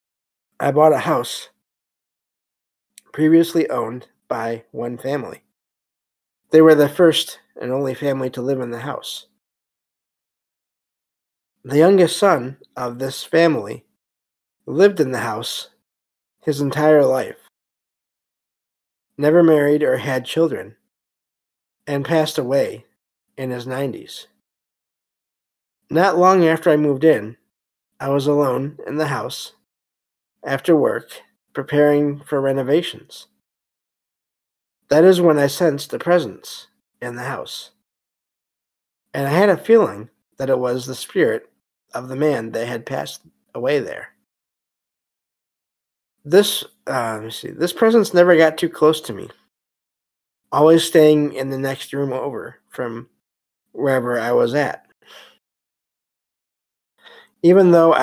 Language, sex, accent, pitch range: English, male, American, 120-160 Hz